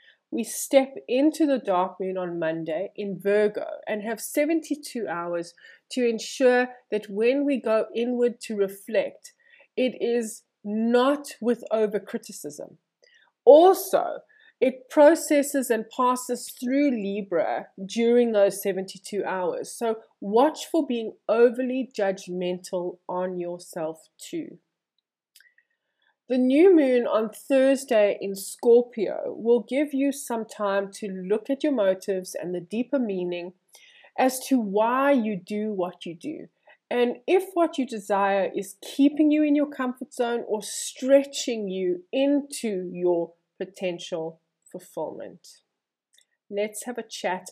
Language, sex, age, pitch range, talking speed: English, female, 20-39, 195-270 Hz, 125 wpm